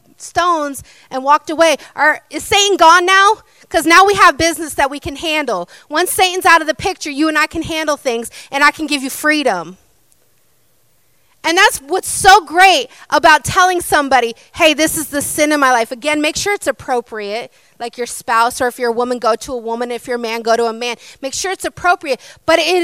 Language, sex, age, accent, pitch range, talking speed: English, female, 30-49, American, 255-355 Hz, 215 wpm